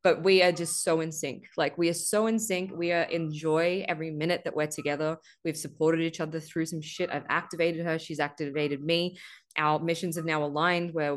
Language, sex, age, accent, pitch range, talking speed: English, female, 20-39, Australian, 155-185 Hz, 220 wpm